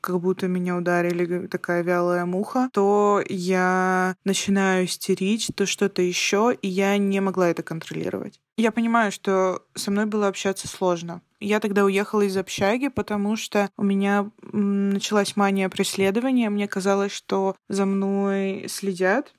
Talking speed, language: 140 wpm, Russian